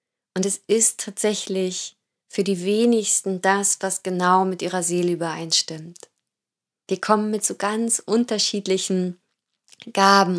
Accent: German